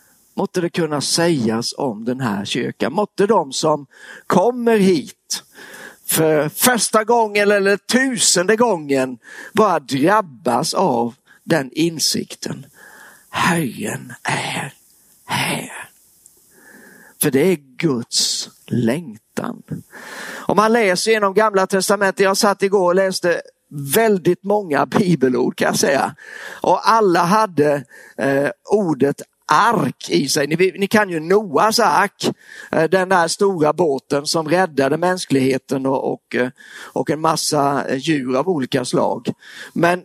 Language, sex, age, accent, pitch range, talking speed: Swedish, male, 50-69, native, 150-205 Hz, 115 wpm